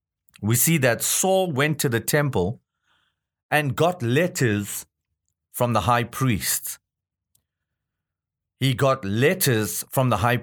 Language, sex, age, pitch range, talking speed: English, male, 40-59, 100-145 Hz, 120 wpm